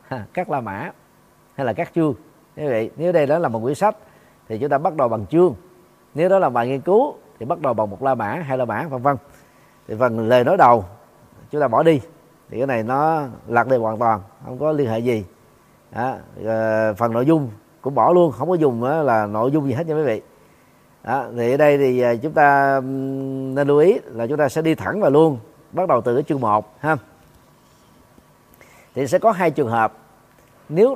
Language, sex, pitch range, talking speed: Vietnamese, male, 115-160 Hz, 215 wpm